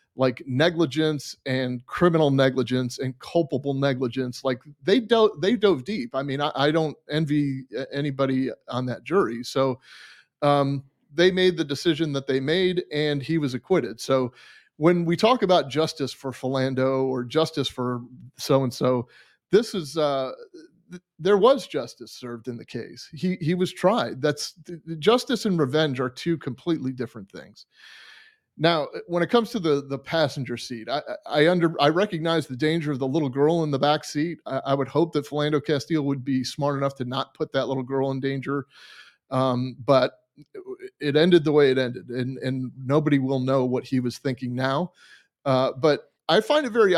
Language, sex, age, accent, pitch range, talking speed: English, male, 30-49, American, 130-170 Hz, 180 wpm